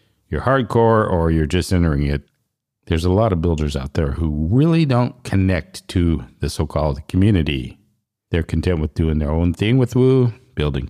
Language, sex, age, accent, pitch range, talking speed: English, male, 50-69, American, 75-100 Hz, 175 wpm